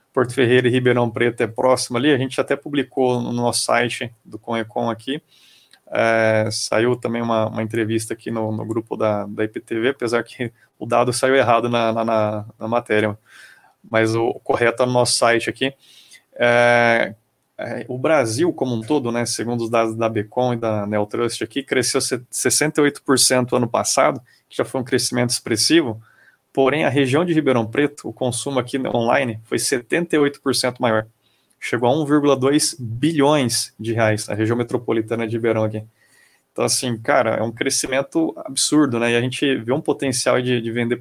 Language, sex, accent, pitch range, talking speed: Portuguese, male, Brazilian, 115-130 Hz, 175 wpm